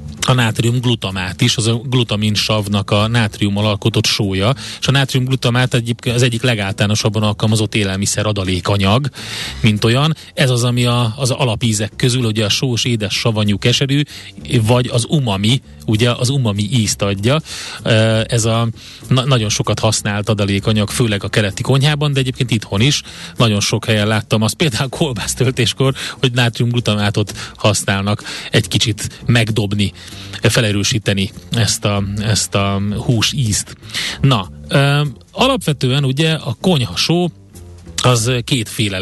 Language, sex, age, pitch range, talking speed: Hungarian, male, 30-49, 105-130 Hz, 130 wpm